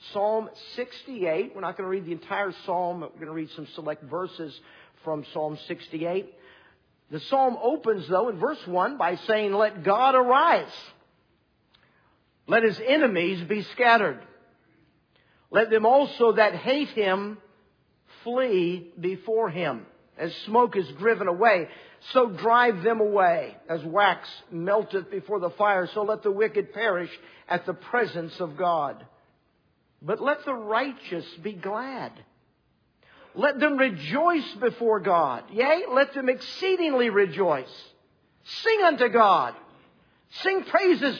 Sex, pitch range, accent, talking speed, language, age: male, 175-250 Hz, American, 135 wpm, English, 50-69